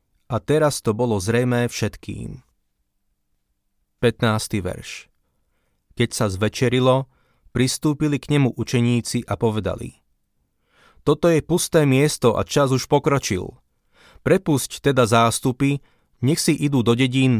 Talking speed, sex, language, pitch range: 115 wpm, male, Slovak, 110-140 Hz